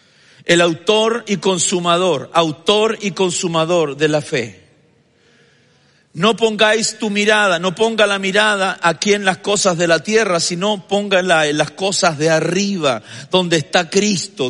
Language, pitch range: Spanish, 160-205 Hz